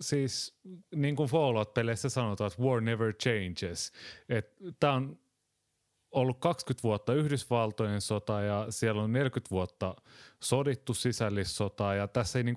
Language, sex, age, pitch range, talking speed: Finnish, male, 30-49, 95-125 Hz, 130 wpm